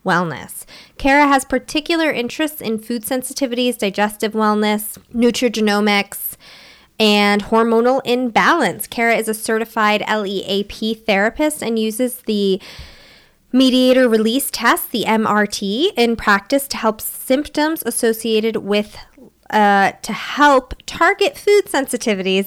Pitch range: 200-245 Hz